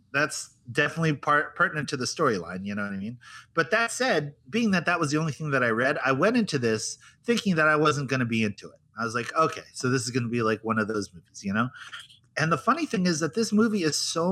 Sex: male